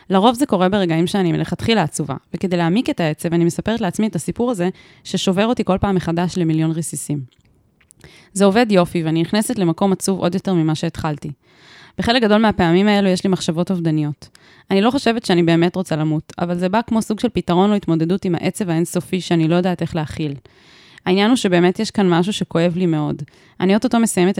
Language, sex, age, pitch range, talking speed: Hebrew, female, 20-39, 165-195 Hz, 190 wpm